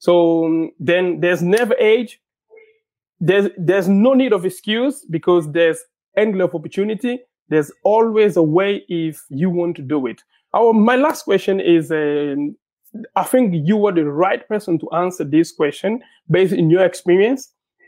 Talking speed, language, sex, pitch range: 160 wpm, English, male, 170-215 Hz